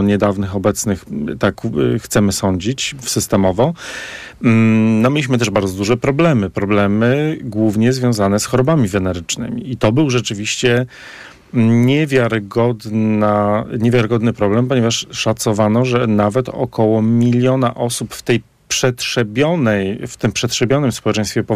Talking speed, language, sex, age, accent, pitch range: 110 wpm, Polish, male, 40-59, native, 105-125 Hz